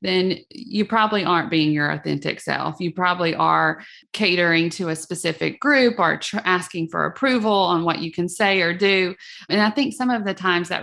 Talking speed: 195 wpm